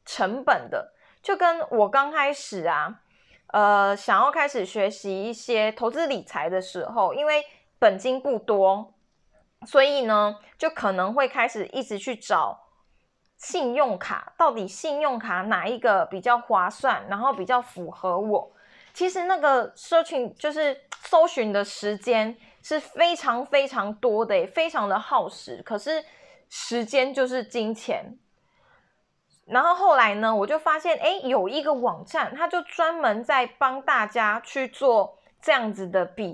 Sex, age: female, 20-39